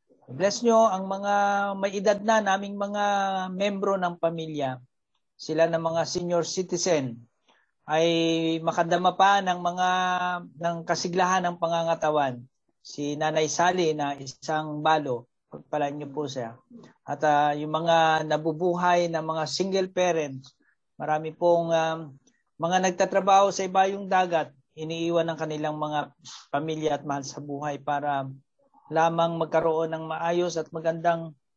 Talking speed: 135 wpm